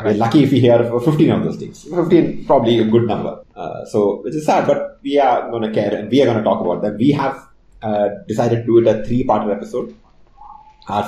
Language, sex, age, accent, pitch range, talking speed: English, male, 30-49, Indian, 105-125 Hz, 245 wpm